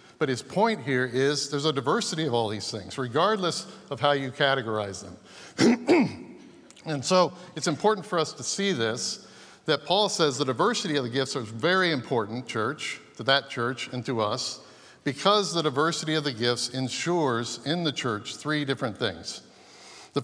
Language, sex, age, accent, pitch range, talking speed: English, male, 50-69, American, 125-150 Hz, 175 wpm